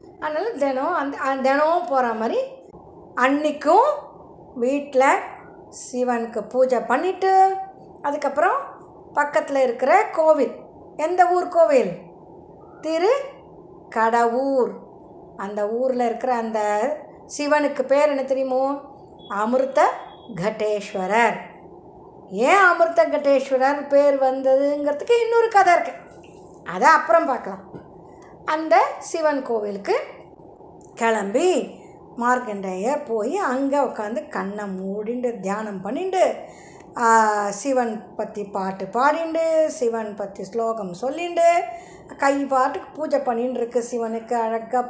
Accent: native